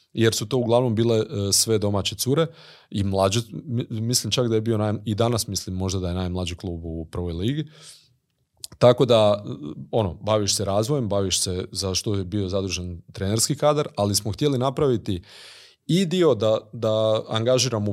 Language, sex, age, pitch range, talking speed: Croatian, male, 30-49, 100-120 Hz, 170 wpm